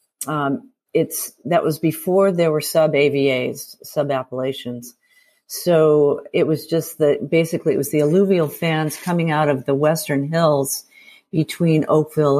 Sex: female